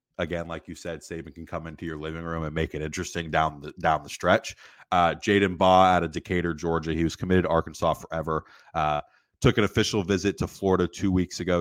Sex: male